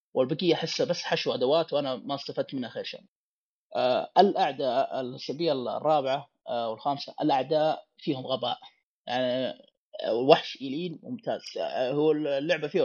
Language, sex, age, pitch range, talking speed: Arabic, male, 30-49, 130-160 Hz, 130 wpm